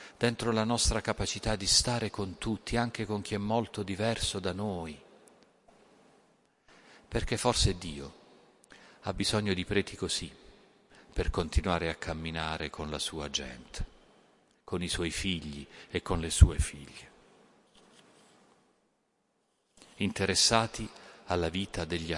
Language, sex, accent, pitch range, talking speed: Italian, male, native, 85-110 Hz, 120 wpm